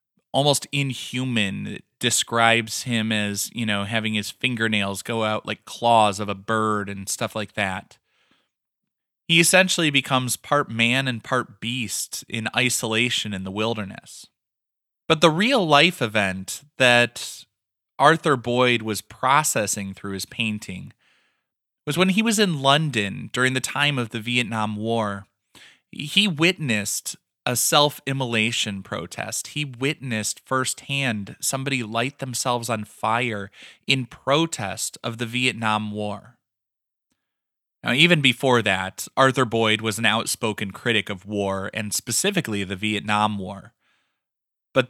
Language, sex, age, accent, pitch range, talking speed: English, male, 20-39, American, 105-130 Hz, 130 wpm